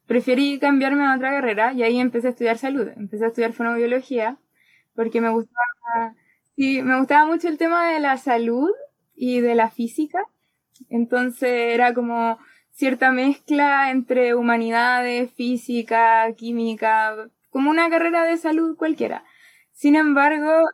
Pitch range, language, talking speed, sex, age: 225-275 Hz, Spanish, 140 wpm, female, 20-39